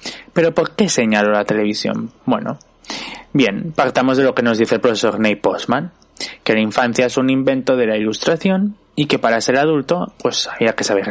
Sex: male